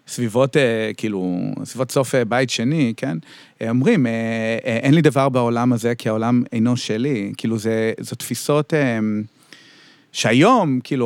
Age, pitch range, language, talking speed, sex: 40-59, 115-150 Hz, Hebrew, 125 wpm, male